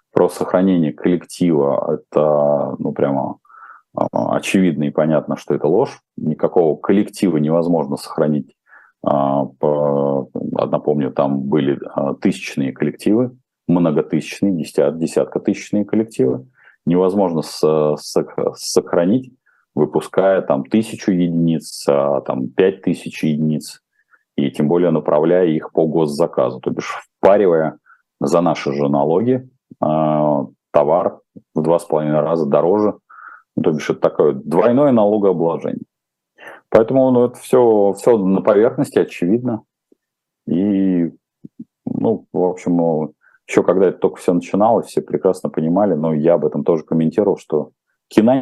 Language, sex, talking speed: Russian, male, 115 wpm